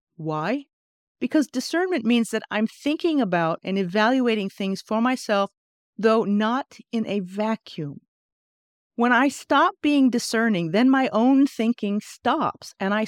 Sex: female